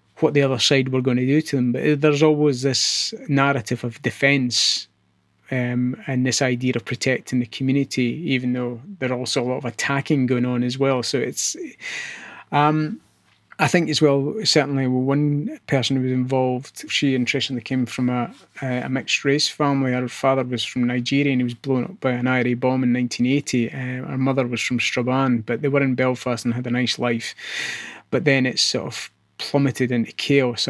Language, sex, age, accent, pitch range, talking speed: English, male, 20-39, British, 125-135 Hz, 190 wpm